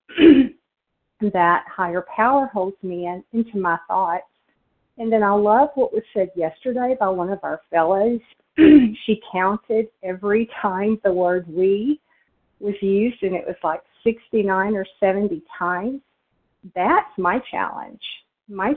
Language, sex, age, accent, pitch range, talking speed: English, female, 50-69, American, 190-230 Hz, 140 wpm